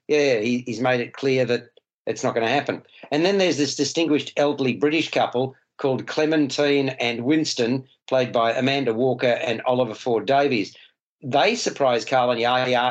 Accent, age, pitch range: Australian, 50-69, 120-145 Hz